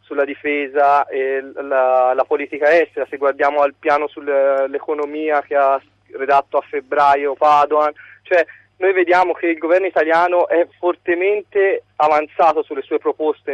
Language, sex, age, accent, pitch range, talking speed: Italian, male, 30-49, native, 145-185 Hz, 135 wpm